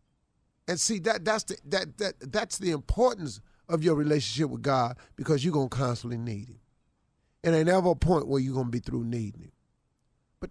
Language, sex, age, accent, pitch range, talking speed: English, male, 40-59, American, 115-165 Hz, 200 wpm